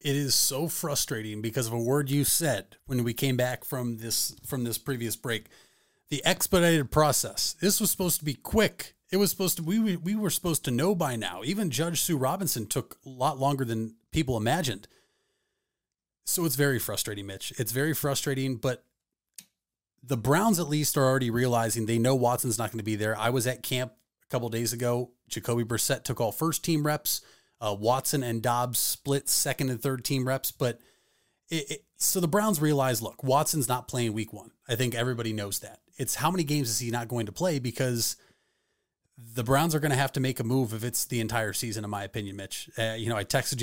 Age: 30-49